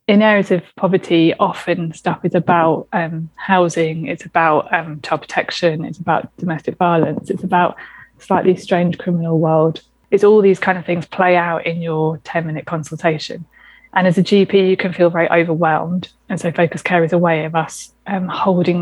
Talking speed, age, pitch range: 185 wpm, 20-39, 165-195 Hz